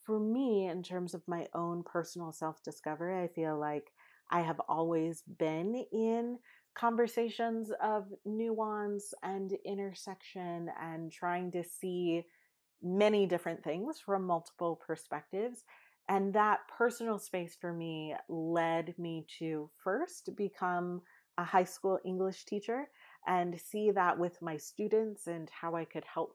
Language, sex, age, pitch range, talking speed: English, female, 30-49, 165-195 Hz, 135 wpm